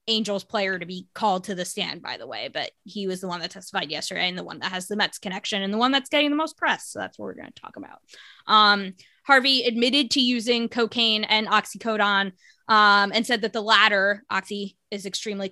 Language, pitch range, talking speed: English, 195-235 Hz, 230 wpm